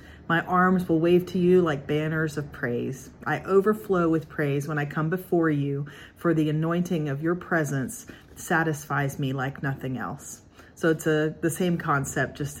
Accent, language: American, English